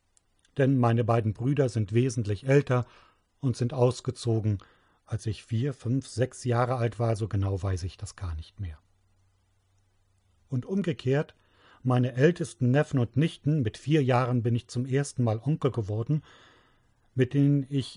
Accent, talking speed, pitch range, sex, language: German, 155 wpm, 100-130 Hz, male, German